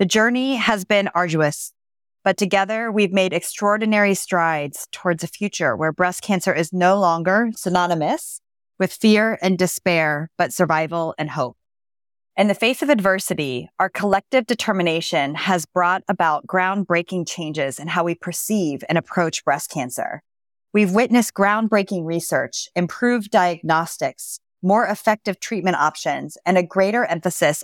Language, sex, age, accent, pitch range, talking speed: English, female, 30-49, American, 165-205 Hz, 140 wpm